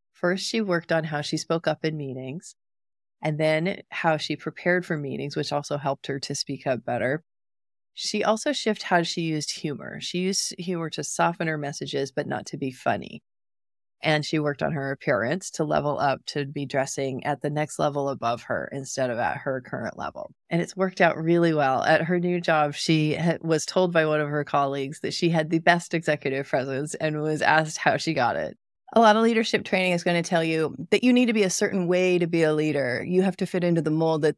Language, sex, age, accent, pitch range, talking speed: English, female, 30-49, American, 145-180 Hz, 225 wpm